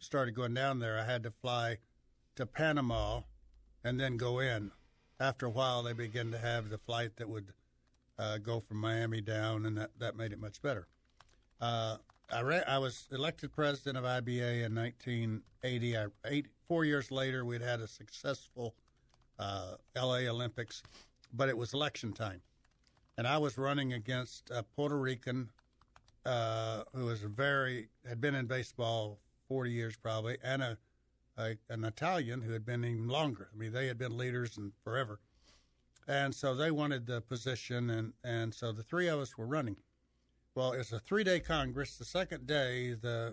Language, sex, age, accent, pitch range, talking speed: English, male, 60-79, American, 110-135 Hz, 170 wpm